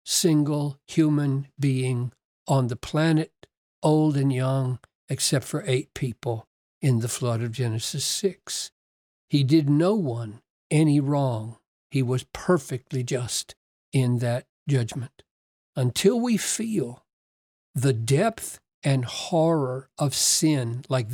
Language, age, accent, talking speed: English, 60-79, American, 120 wpm